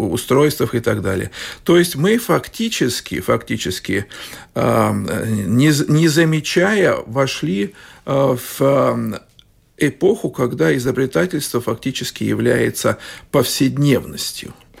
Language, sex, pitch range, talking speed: Russian, male, 120-165 Hz, 75 wpm